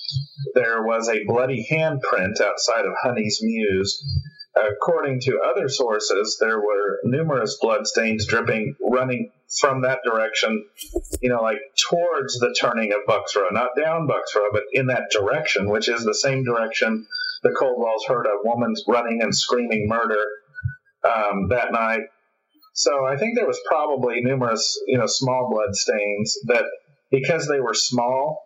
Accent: American